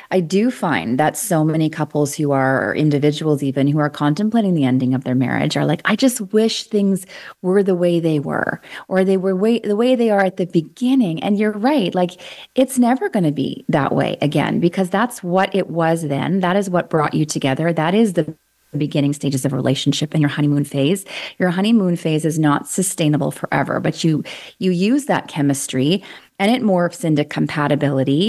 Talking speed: 200 wpm